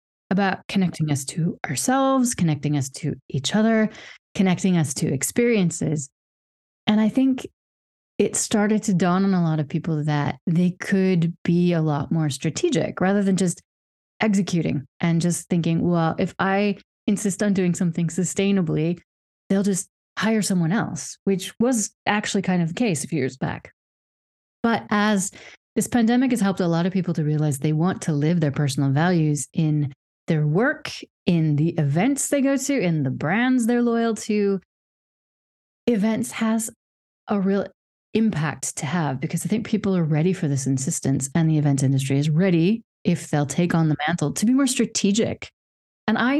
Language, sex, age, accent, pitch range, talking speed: English, female, 30-49, American, 155-210 Hz, 170 wpm